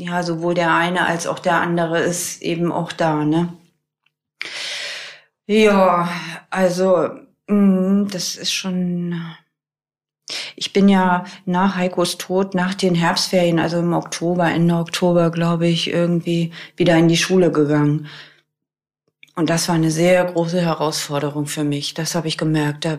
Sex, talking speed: female, 140 wpm